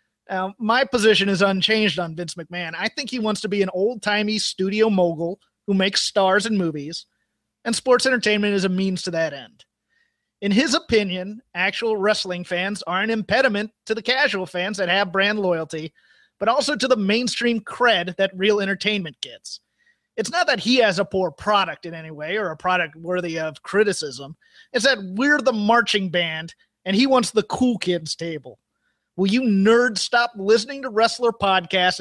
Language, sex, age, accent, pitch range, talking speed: English, male, 30-49, American, 180-225 Hz, 180 wpm